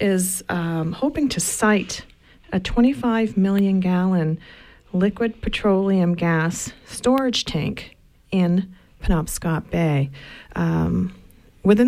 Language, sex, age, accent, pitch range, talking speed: English, female, 40-59, American, 170-210 Hz, 95 wpm